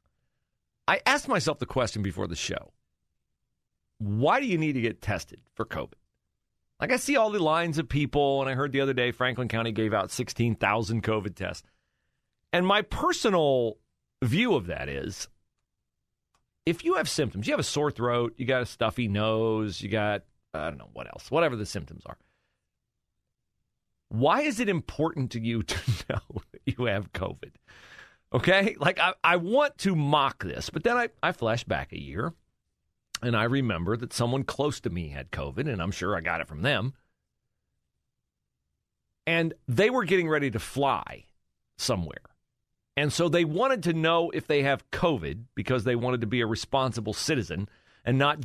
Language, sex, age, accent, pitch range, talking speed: English, male, 40-59, American, 105-150 Hz, 180 wpm